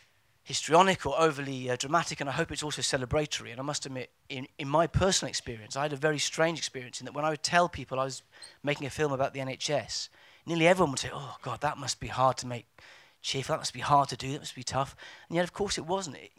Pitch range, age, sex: 125-150 Hz, 30-49, male